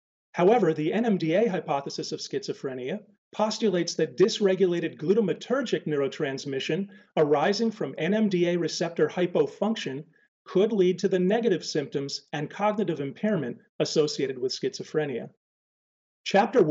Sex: male